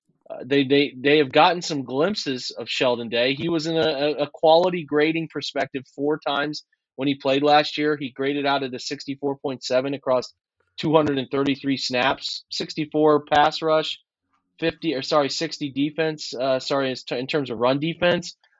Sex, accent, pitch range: male, American, 130-155 Hz